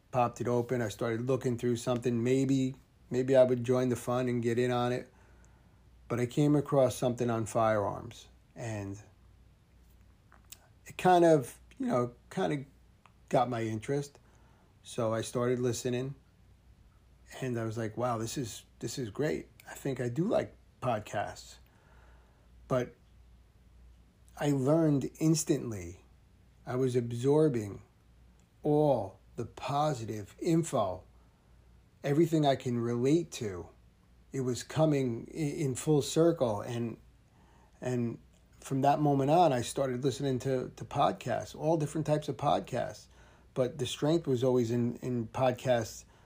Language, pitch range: English, 105-135 Hz